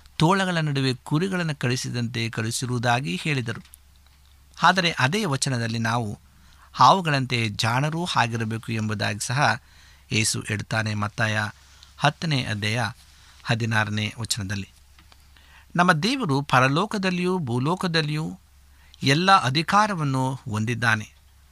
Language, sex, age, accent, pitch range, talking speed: Kannada, male, 50-69, native, 100-155 Hz, 80 wpm